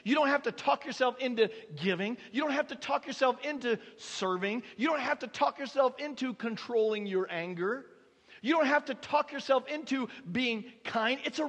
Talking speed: 195 wpm